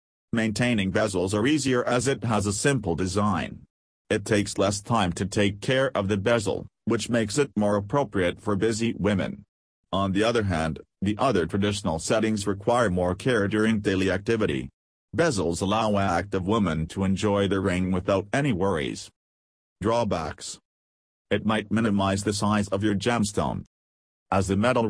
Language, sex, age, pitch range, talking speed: English, male, 40-59, 95-115 Hz, 155 wpm